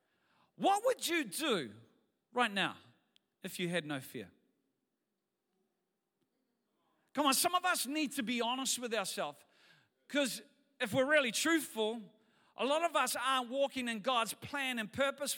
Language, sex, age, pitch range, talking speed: English, male, 40-59, 200-265 Hz, 150 wpm